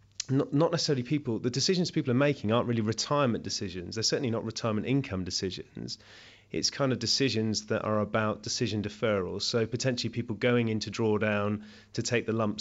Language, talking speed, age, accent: English, 175 wpm, 30-49, British